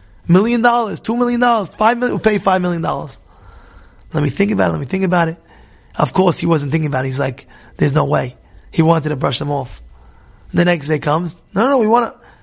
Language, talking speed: English, 235 wpm